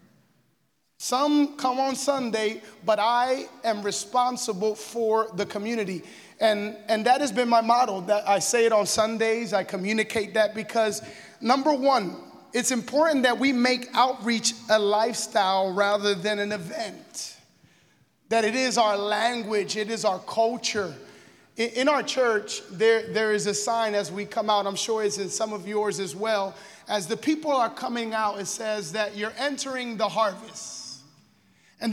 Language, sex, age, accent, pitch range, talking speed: English, male, 30-49, American, 210-255 Hz, 165 wpm